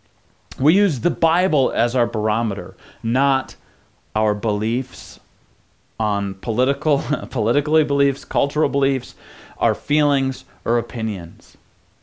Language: English